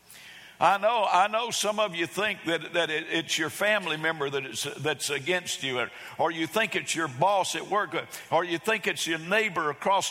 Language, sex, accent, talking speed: English, male, American, 215 wpm